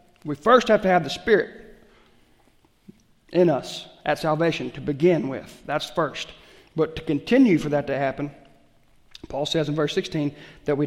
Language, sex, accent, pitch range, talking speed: English, male, American, 145-190 Hz, 165 wpm